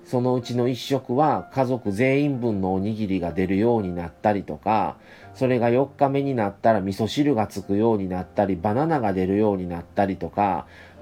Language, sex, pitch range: Japanese, male, 100-125 Hz